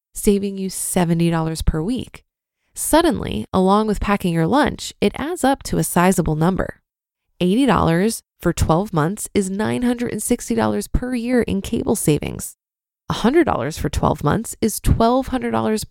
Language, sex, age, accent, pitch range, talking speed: English, female, 20-39, American, 175-230 Hz, 130 wpm